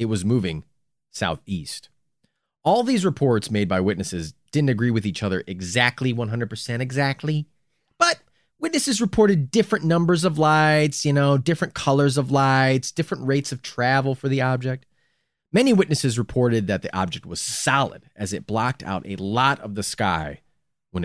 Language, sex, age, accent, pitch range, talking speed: English, male, 30-49, American, 105-155 Hz, 160 wpm